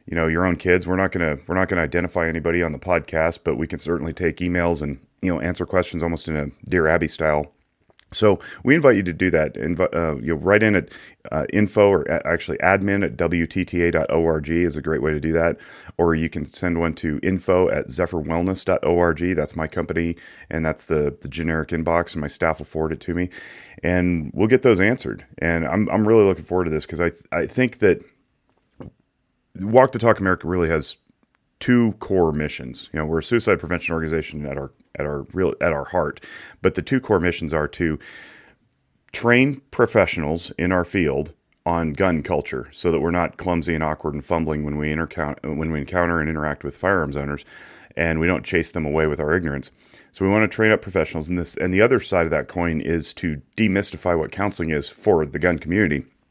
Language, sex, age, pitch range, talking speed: English, male, 30-49, 80-90 Hz, 215 wpm